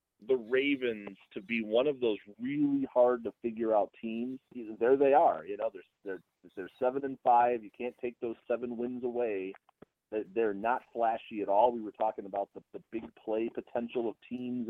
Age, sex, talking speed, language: 40-59, male, 190 wpm, English